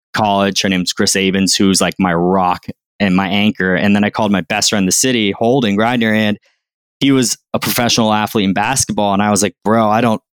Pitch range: 95-115 Hz